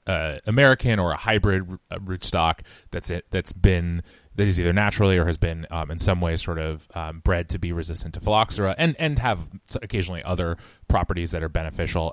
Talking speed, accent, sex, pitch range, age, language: 195 wpm, American, male, 85-100 Hz, 20-39, English